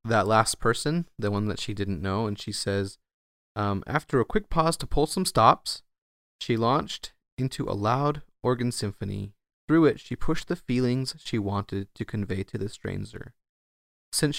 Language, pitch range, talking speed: English, 100-130 Hz, 175 wpm